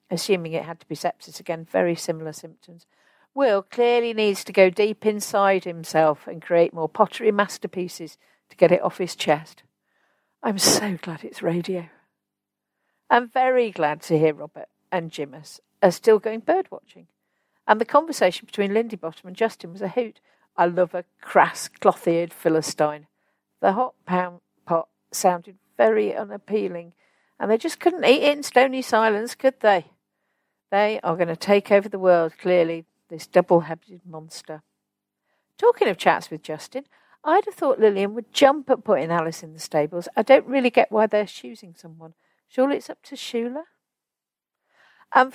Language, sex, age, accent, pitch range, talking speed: English, female, 50-69, British, 170-220 Hz, 165 wpm